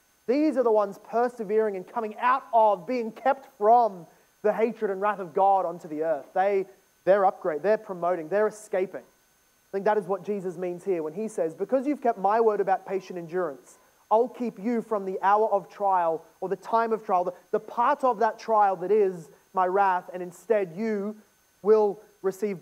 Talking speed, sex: 200 wpm, male